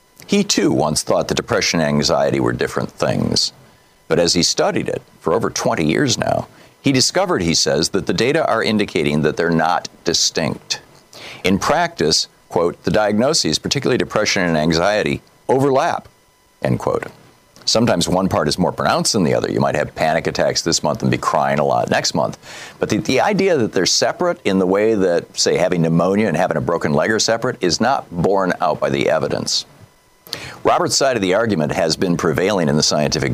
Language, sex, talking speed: English, male, 195 wpm